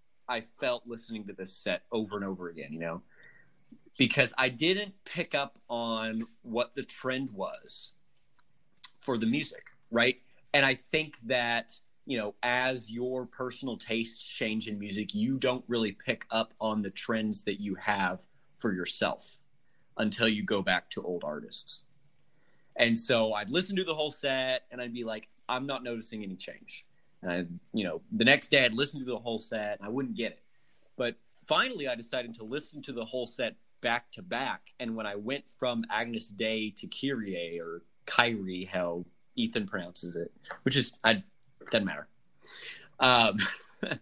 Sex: male